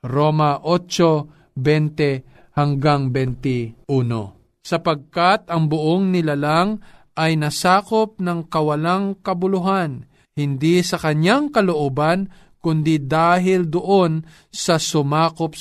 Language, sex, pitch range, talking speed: Filipino, male, 135-175 Hz, 75 wpm